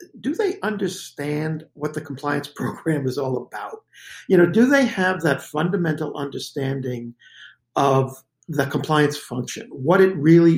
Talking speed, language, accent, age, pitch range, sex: 140 wpm, English, American, 50-69, 140-170 Hz, male